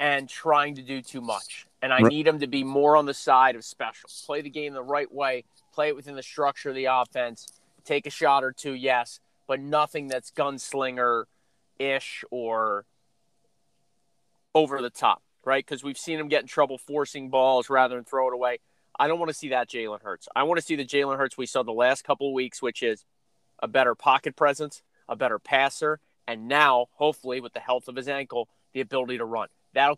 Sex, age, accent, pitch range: male, 30-49, American, 125-150 Hz